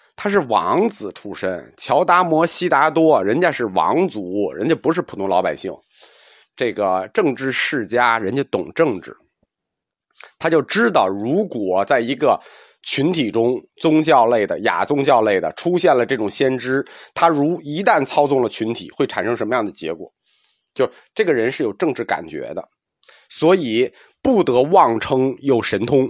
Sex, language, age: male, Chinese, 30-49